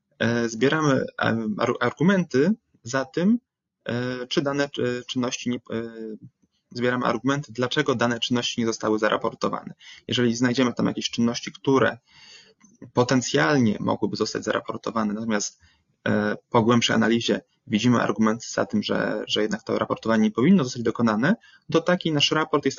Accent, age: native, 20-39